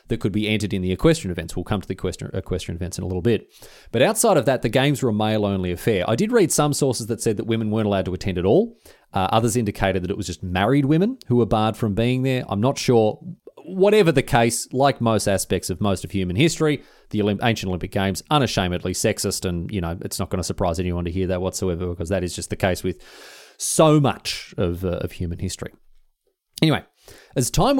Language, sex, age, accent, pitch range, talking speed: English, male, 30-49, Australian, 95-125 Hz, 235 wpm